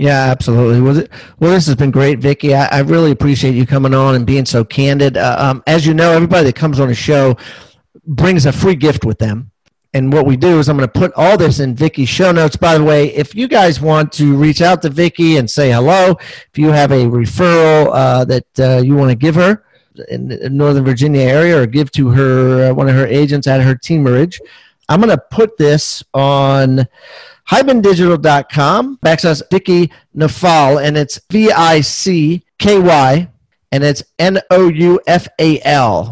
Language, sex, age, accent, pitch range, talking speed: English, male, 40-59, American, 135-175 Hz, 175 wpm